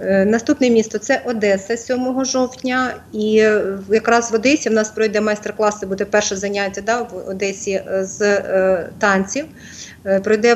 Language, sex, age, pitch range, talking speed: English, female, 30-49, 205-235 Hz, 135 wpm